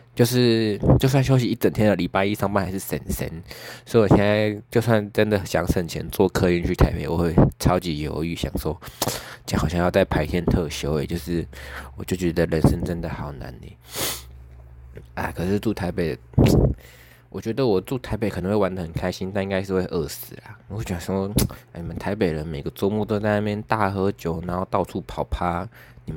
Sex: male